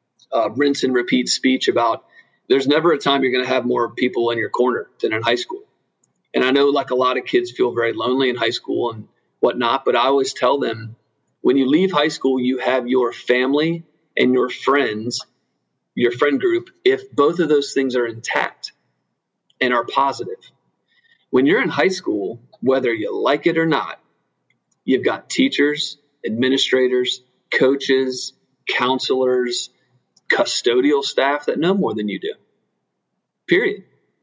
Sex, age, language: male, 40-59, English